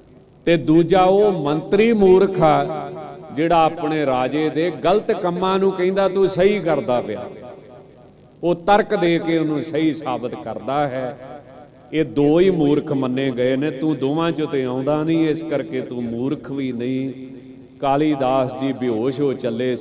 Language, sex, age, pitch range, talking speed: Punjabi, male, 40-59, 130-160 Hz, 150 wpm